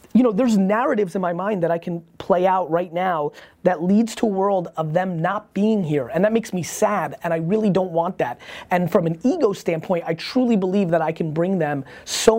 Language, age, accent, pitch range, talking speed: English, 30-49, American, 145-185 Hz, 235 wpm